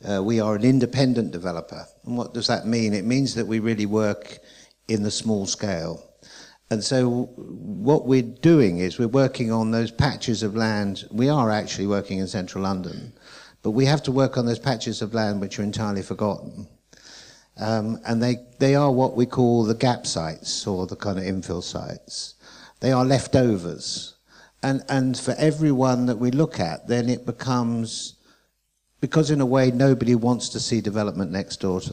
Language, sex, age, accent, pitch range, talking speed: English, male, 50-69, British, 100-125 Hz, 185 wpm